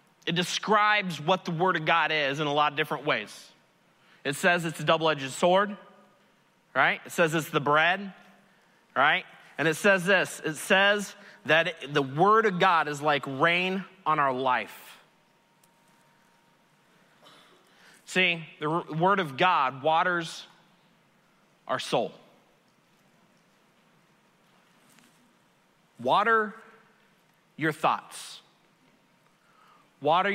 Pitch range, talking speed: 155-190 Hz, 115 wpm